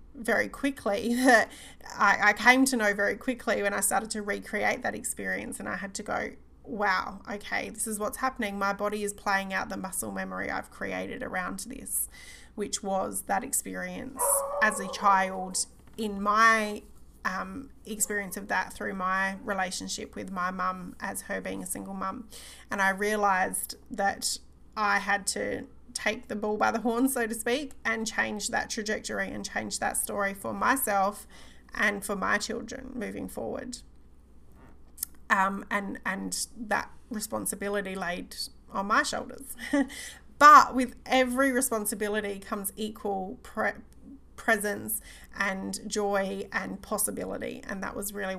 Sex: female